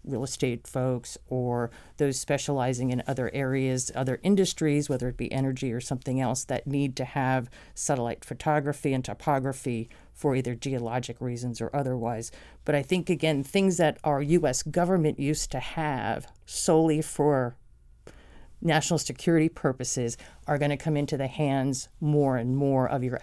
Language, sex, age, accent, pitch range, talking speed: English, female, 40-59, American, 130-160 Hz, 155 wpm